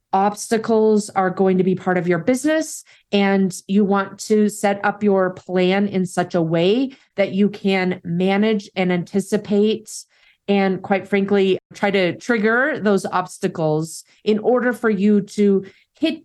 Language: English